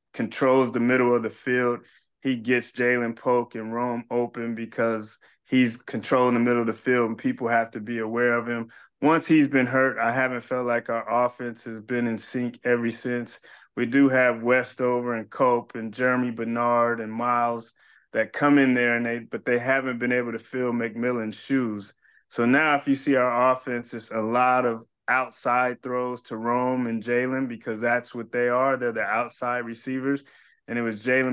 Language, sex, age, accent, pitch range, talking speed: English, male, 20-39, American, 115-125 Hz, 195 wpm